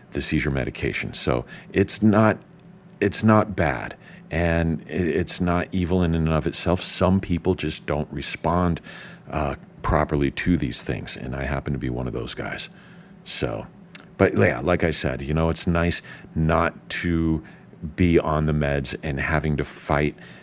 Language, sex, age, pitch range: English, male, 50-69, 70-90 Hz